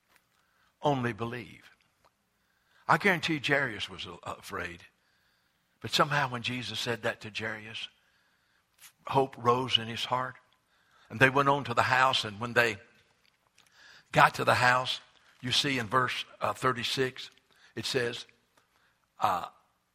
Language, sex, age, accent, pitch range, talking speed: English, male, 60-79, American, 110-135 Hz, 125 wpm